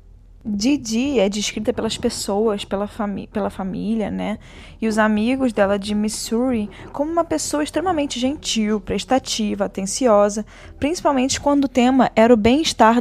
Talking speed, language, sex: 140 wpm, Portuguese, female